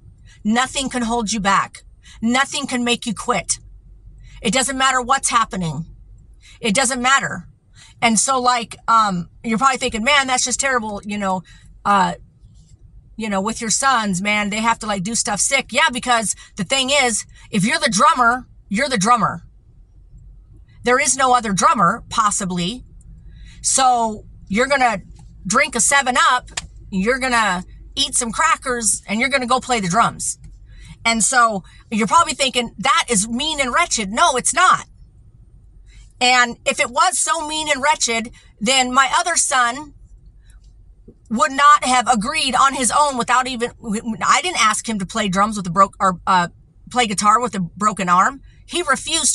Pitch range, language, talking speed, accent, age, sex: 195-265 Hz, English, 170 wpm, American, 50-69, female